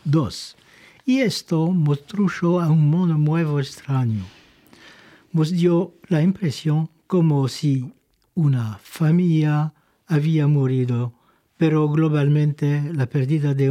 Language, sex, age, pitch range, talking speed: French, male, 60-79, 135-165 Hz, 105 wpm